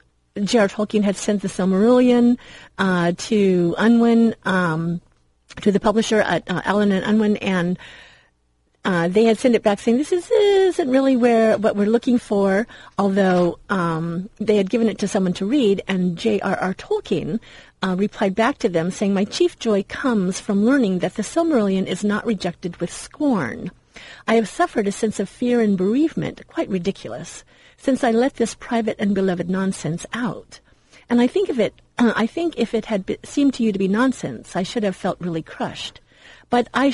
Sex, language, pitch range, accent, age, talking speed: female, English, 180-230 Hz, American, 40-59, 185 wpm